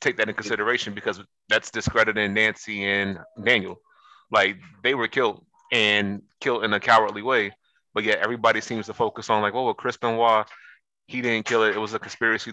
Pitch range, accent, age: 105-115 Hz, American, 20-39